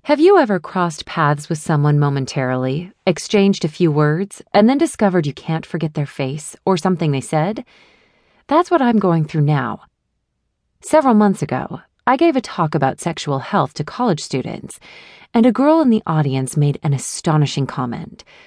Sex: female